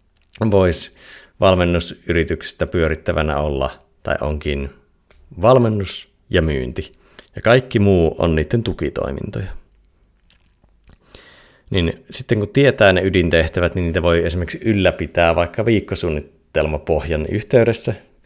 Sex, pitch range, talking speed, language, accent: male, 85-110 Hz, 95 wpm, Finnish, native